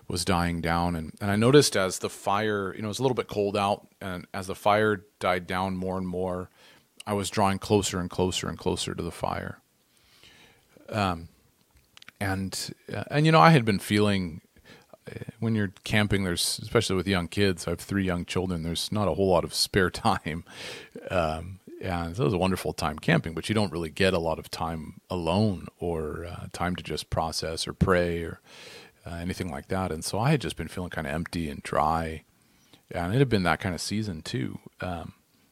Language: English